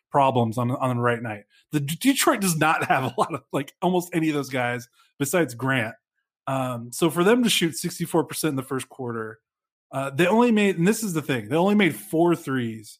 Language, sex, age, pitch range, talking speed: English, male, 20-39, 125-165 Hz, 220 wpm